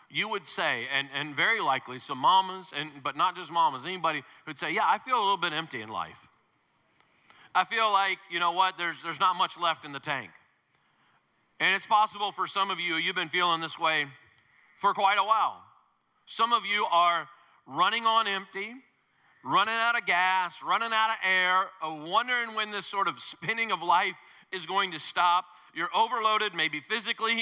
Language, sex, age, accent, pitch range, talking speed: English, male, 40-59, American, 160-215 Hz, 190 wpm